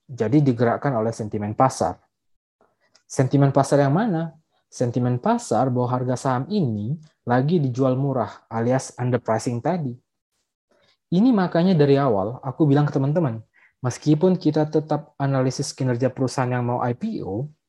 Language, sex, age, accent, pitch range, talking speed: Indonesian, male, 20-39, native, 120-155 Hz, 130 wpm